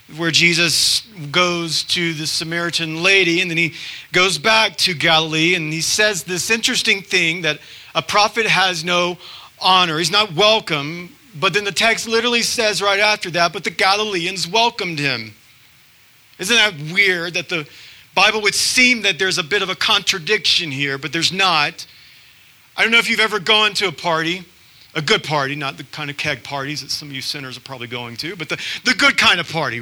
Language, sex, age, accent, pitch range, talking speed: English, male, 40-59, American, 150-205 Hz, 195 wpm